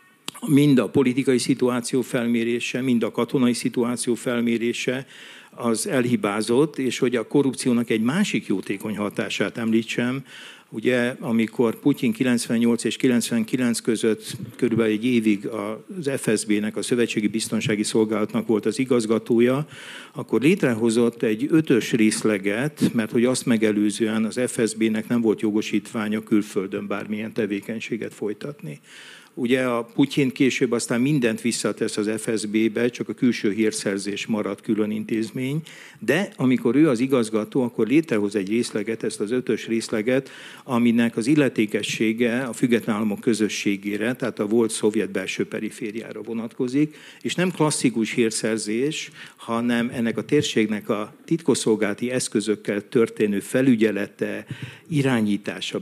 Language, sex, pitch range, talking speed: Hungarian, male, 110-125 Hz, 125 wpm